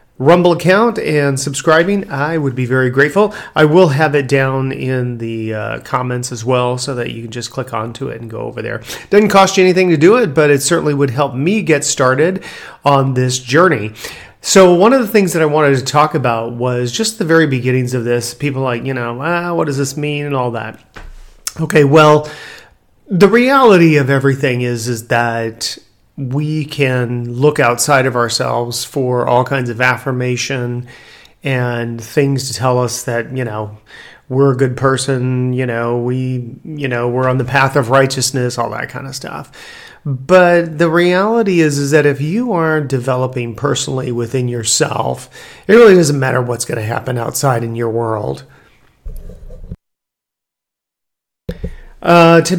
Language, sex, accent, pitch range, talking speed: English, male, American, 120-155 Hz, 175 wpm